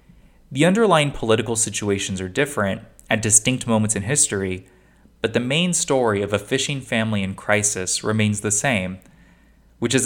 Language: English